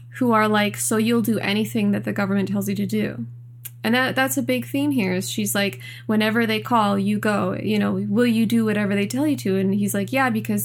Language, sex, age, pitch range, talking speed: English, female, 20-39, 185-235 Hz, 250 wpm